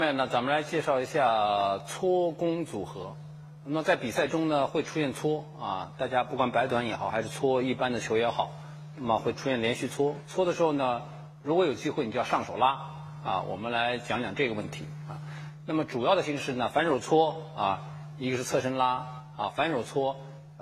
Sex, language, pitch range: male, Chinese, 135-155 Hz